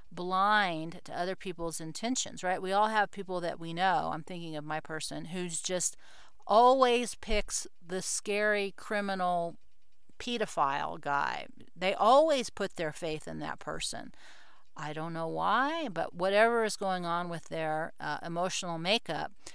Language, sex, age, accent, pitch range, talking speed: English, female, 40-59, American, 165-200 Hz, 150 wpm